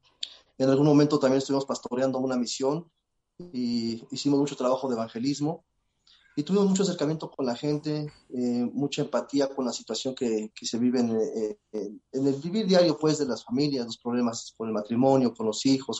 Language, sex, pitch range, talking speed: Spanish, male, 120-150 Hz, 190 wpm